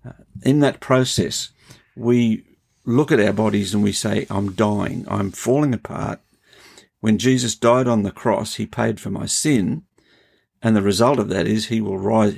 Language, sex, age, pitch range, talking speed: English, male, 50-69, 105-130 Hz, 175 wpm